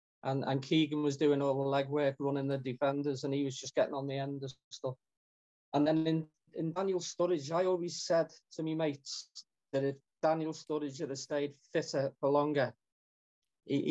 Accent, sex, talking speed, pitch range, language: British, male, 185 wpm, 135-150 Hz, English